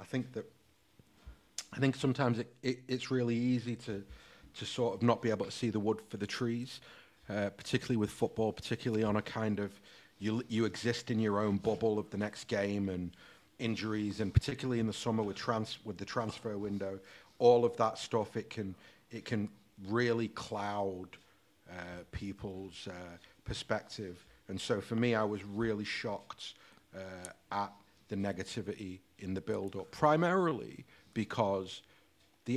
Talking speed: 165 wpm